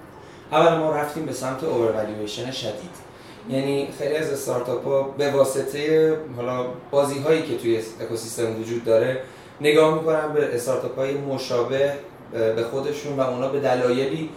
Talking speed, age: 130 wpm, 30-49